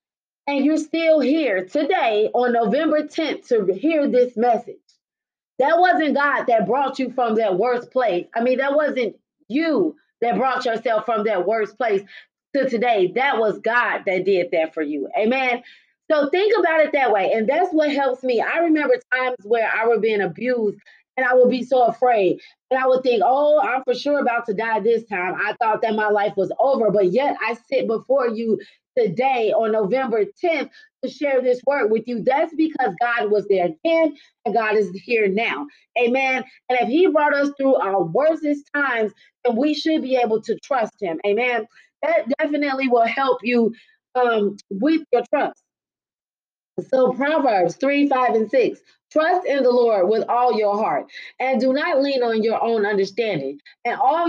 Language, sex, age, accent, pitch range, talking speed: English, female, 30-49, American, 225-295 Hz, 185 wpm